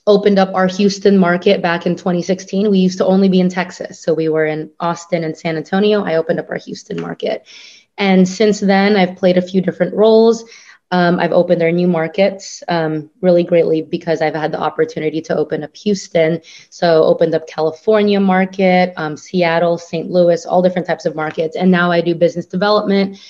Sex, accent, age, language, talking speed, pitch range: female, American, 20-39, English, 195 wpm, 160-185 Hz